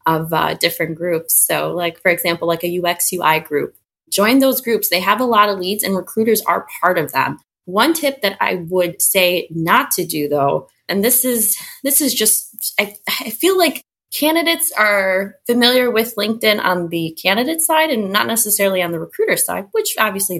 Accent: American